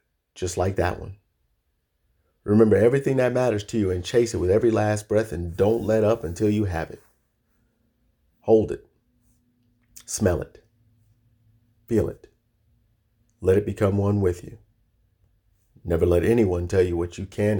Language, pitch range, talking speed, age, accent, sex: English, 90-110 Hz, 155 wpm, 50-69, American, male